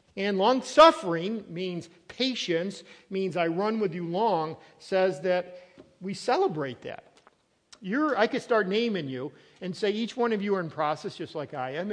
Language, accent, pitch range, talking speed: English, American, 170-230 Hz, 165 wpm